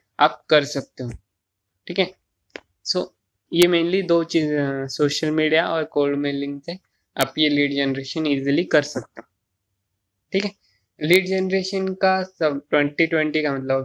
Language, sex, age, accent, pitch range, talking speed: Hindi, male, 20-39, native, 135-155 Hz, 145 wpm